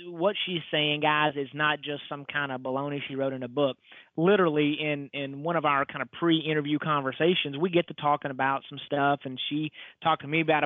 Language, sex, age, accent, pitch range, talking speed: English, male, 30-49, American, 145-165 Hz, 225 wpm